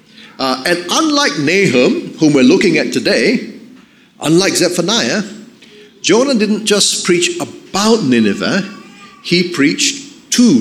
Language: English